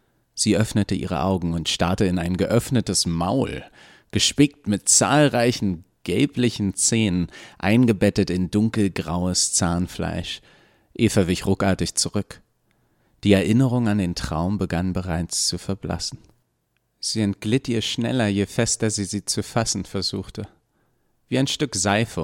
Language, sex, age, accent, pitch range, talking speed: German, male, 40-59, German, 90-115 Hz, 125 wpm